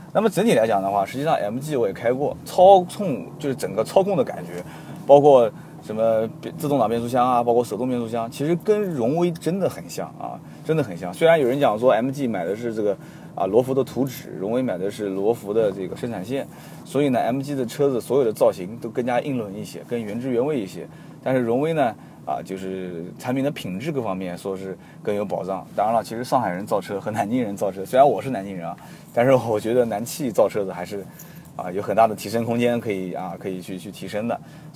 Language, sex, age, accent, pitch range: Chinese, male, 20-39, native, 110-155 Hz